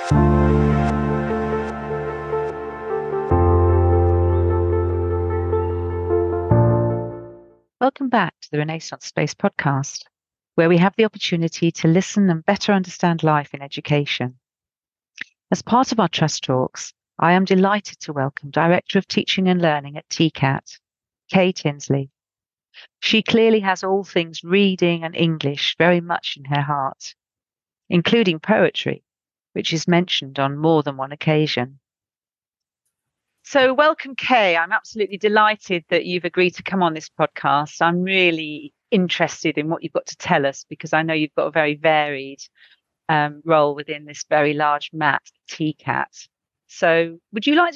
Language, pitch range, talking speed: English, 140-195 Hz, 135 wpm